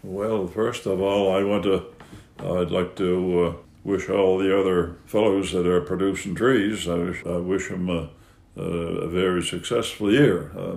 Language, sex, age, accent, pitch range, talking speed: English, male, 60-79, American, 90-100 Hz, 175 wpm